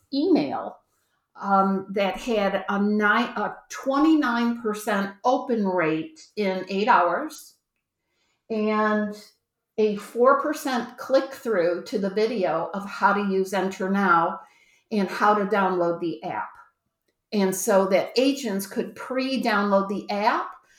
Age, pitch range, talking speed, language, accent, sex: 50-69, 190-240 Hz, 115 wpm, English, American, female